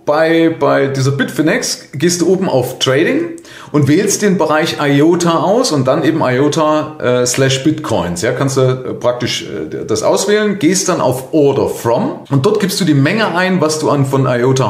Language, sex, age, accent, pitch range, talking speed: German, male, 30-49, German, 120-160 Hz, 190 wpm